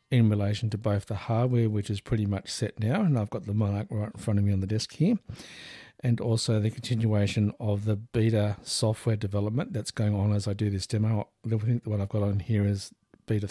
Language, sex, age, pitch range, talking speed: English, male, 50-69, 105-115 Hz, 230 wpm